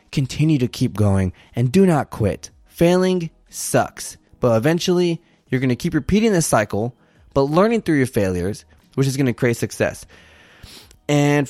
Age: 20-39